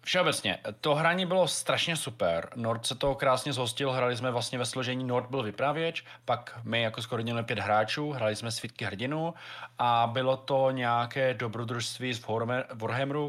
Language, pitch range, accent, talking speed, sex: Czech, 115-135 Hz, native, 170 wpm, male